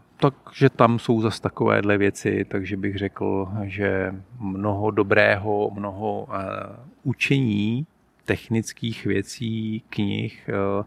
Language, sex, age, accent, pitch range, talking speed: Czech, male, 40-59, native, 100-115 Hz, 95 wpm